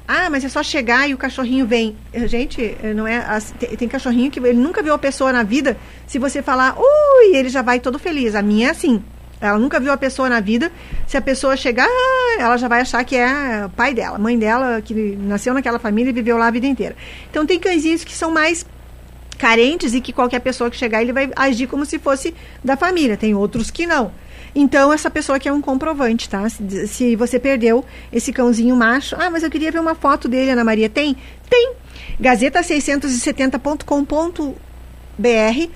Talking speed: 200 wpm